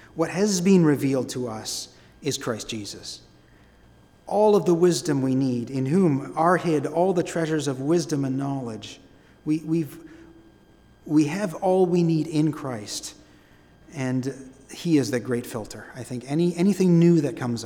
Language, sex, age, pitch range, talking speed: English, male, 40-59, 120-155 Hz, 165 wpm